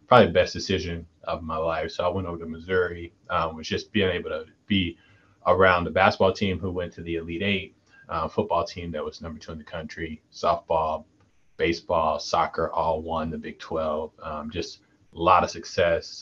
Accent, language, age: American, English, 30-49